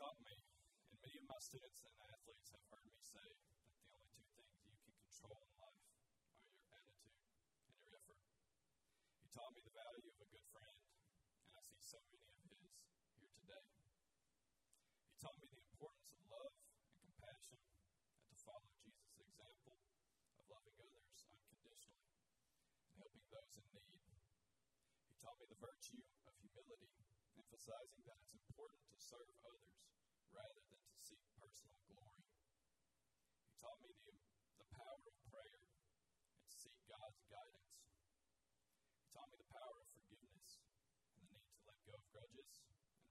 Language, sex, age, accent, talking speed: English, male, 40-59, American, 165 wpm